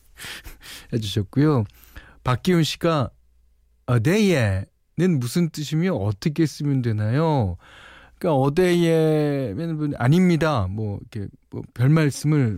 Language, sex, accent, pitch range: Korean, male, native, 115-165 Hz